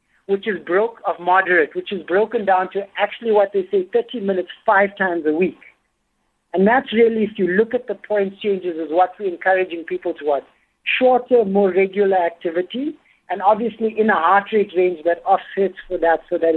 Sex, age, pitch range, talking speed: male, 60-79, 175-220 Hz, 195 wpm